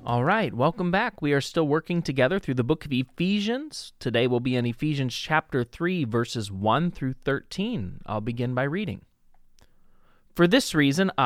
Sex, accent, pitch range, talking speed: male, American, 135-195 Hz, 170 wpm